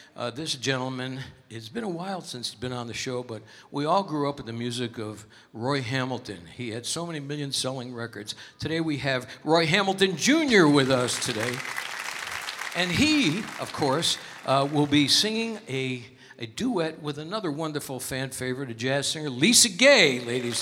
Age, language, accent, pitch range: 60-79, English, American, 115-160 Hz